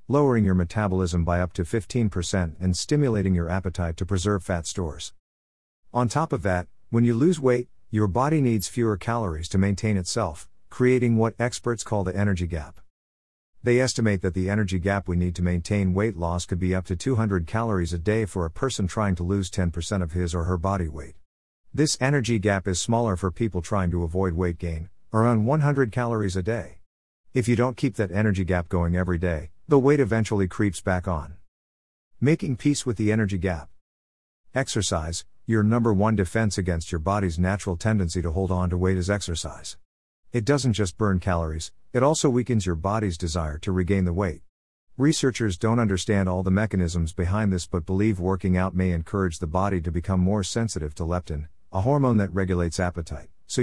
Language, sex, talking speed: English, male, 190 wpm